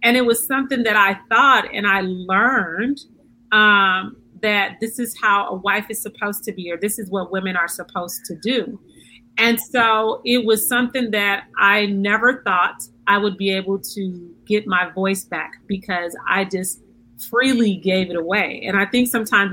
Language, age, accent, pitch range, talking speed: English, 40-59, American, 190-225 Hz, 180 wpm